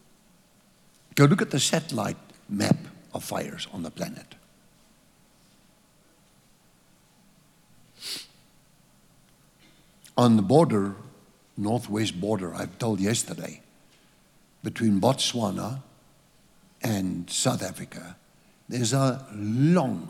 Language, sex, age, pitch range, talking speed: English, male, 60-79, 105-130 Hz, 80 wpm